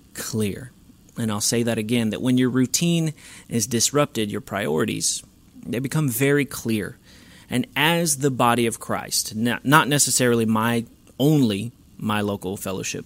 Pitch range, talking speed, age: 110-135 Hz, 140 wpm, 30-49